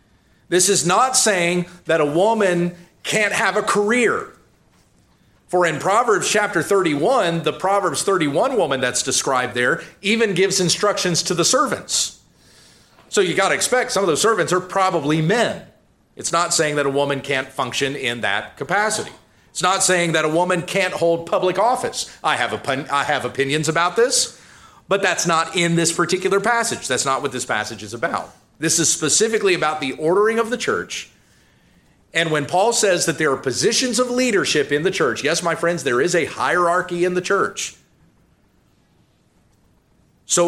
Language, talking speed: English, 175 wpm